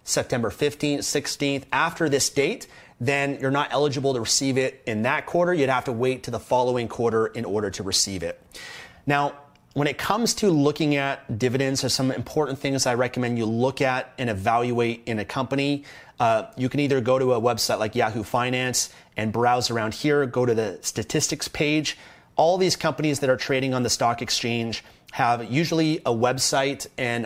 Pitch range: 115-145 Hz